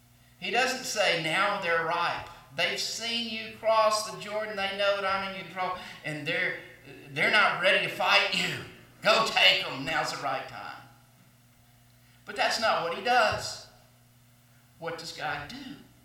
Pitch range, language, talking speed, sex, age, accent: 120-190 Hz, English, 160 wpm, male, 50-69, American